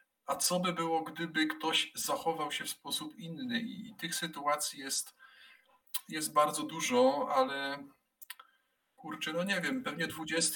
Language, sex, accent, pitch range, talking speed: Polish, male, native, 130-160 Hz, 140 wpm